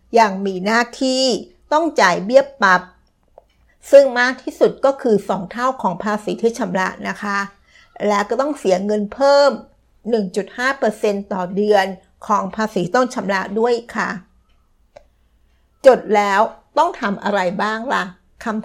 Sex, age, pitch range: female, 60-79, 195-235 Hz